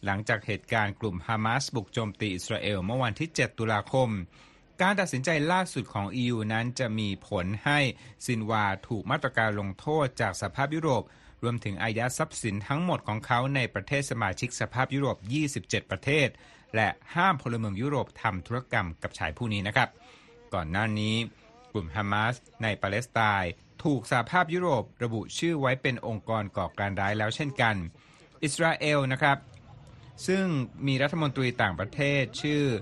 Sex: male